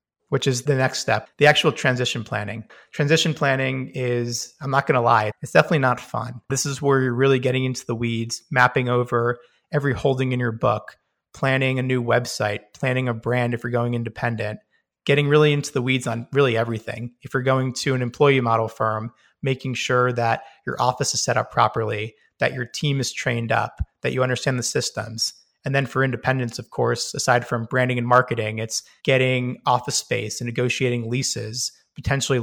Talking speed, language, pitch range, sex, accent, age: 190 wpm, English, 120-135 Hz, male, American, 30-49